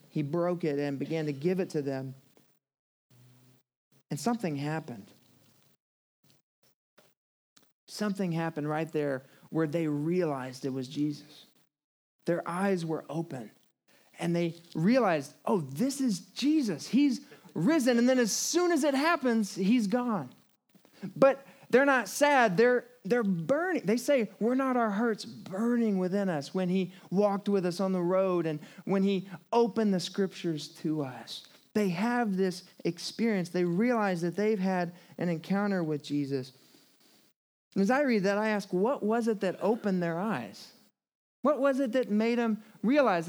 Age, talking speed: 40-59, 150 wpm